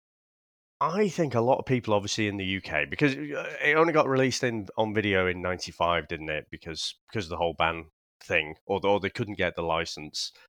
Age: 30-49